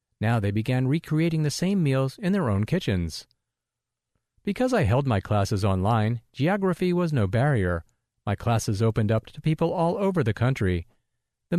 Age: 40-59